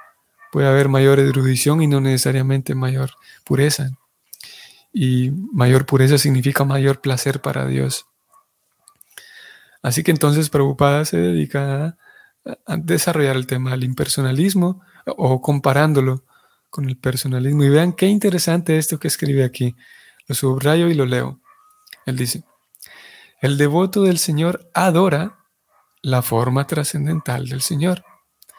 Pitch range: 135-180 Hz